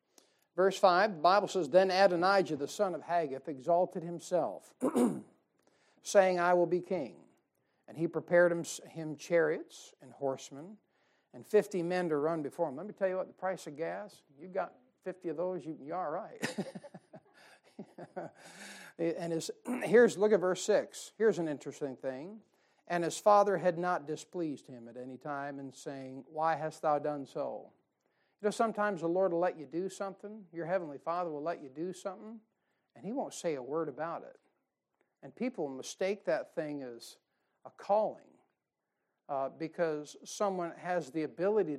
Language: English